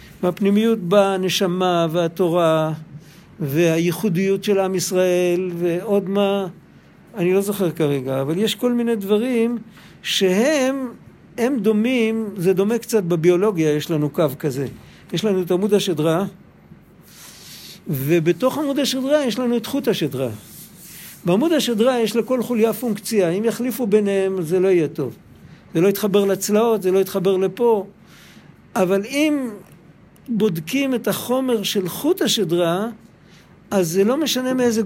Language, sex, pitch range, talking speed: Hebrew, male, 180-235 Hz, 130 wpm